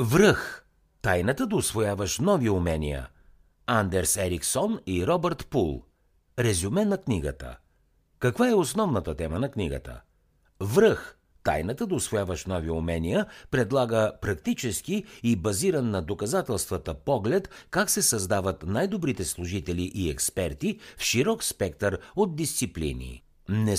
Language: Bulgarian